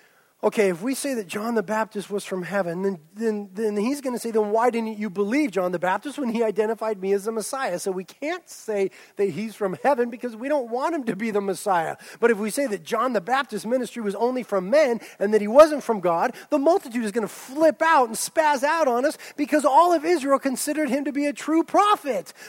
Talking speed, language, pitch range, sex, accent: 245 wpm, English, 205-290 Hz, male, American